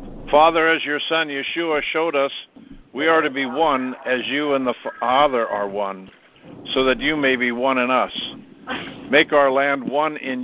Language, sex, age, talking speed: English, male, 60-79, 185 wpm